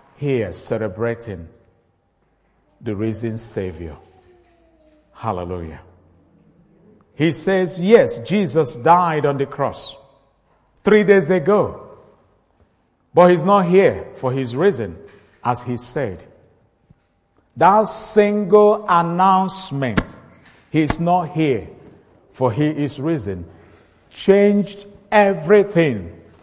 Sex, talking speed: male, 90 wpm